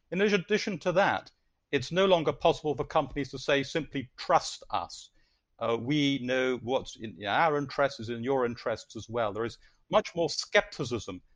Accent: British